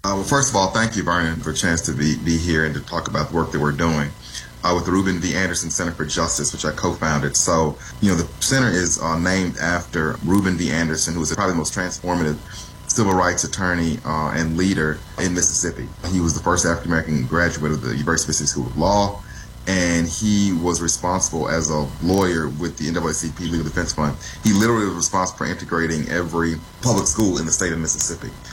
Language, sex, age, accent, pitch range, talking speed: English, male, 30-49, American, 80-95 Hz, 215 wpm